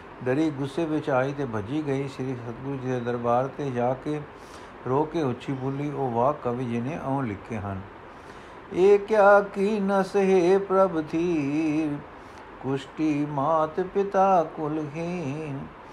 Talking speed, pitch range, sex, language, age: 135 wpm, 130-165 Hz, male, Punjabi, 60-79